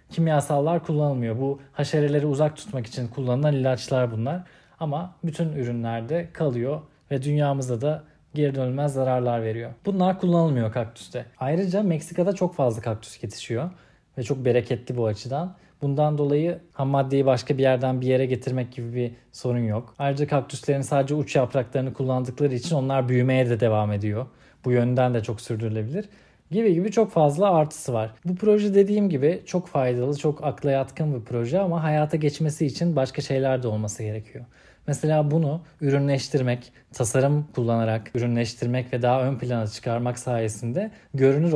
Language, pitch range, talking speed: Turkish, 120-155 Hz, 150 wpm